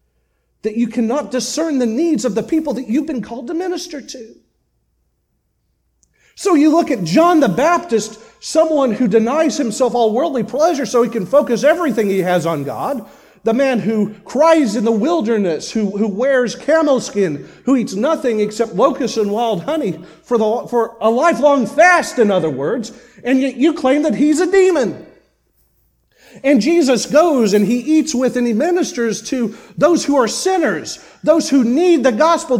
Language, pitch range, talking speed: English, 200-300 Hz, 175 wpm